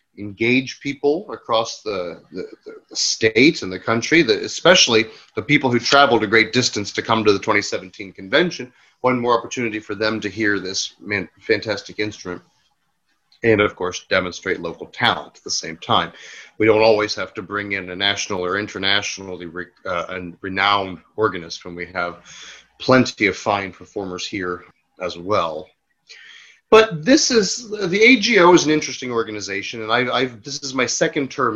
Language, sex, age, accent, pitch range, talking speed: English, male, 30-49, American, 100-150 Hz, 160 wpm